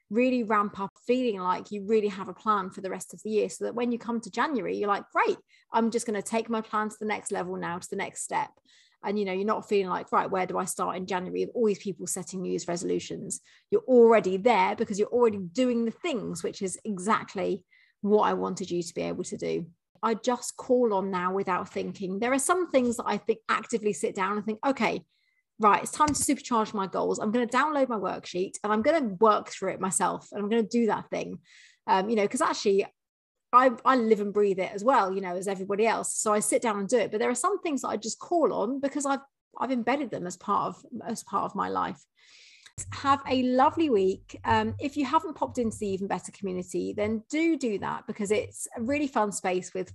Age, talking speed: 30-49, 245 wpm